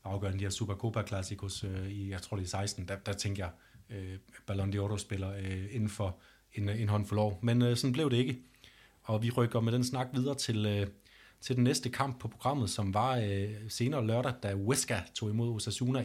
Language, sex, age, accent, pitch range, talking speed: Danish, male, 30-49, native, 100-120 Hz, 185 wpm